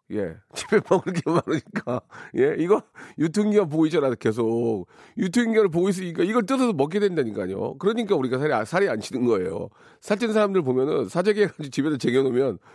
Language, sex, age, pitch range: Korean, male, 40-59, 135-205 Hz